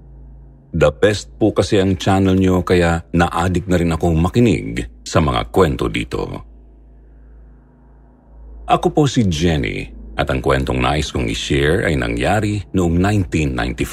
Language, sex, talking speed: Filipino, male, 140 wpm